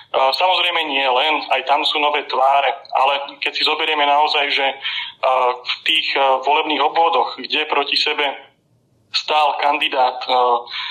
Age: 30-49